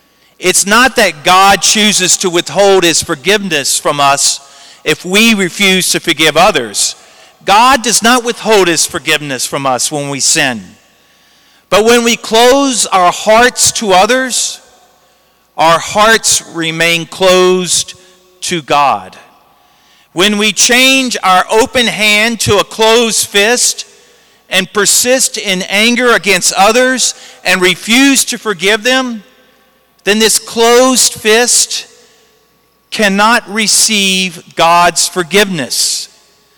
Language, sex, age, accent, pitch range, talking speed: English, male, 40-59, American, 185-235 Hz, 115 wpm